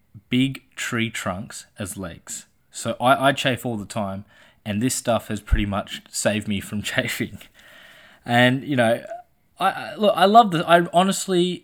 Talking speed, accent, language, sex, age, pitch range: 170 wpm, Australian, English, male, 20-39, 110-140 Hz